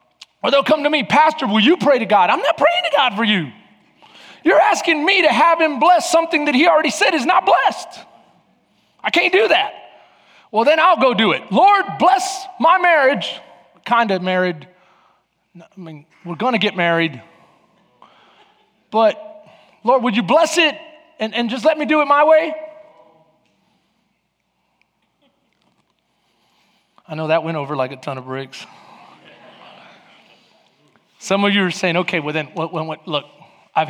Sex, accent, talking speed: male, American, 160 wpm